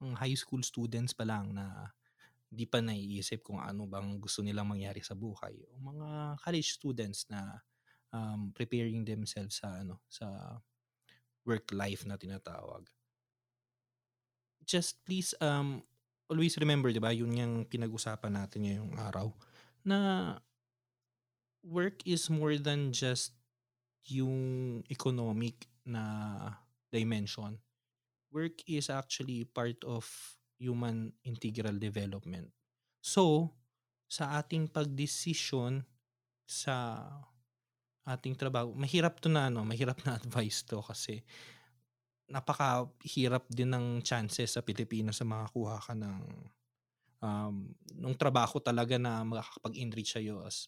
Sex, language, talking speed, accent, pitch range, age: male, Filipino, 115 wpm, native, 110-130 Hz, 20-39